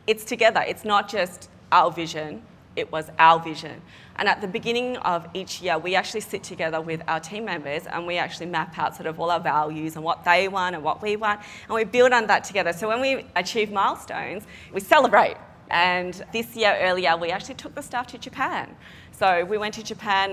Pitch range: 170-220 Hz